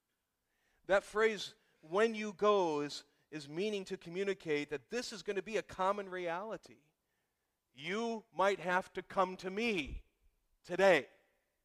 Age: 40-59